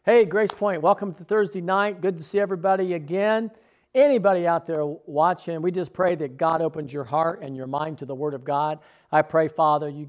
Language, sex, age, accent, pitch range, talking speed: English, male, 50-69, American, 145-190 Hz, 215 wpm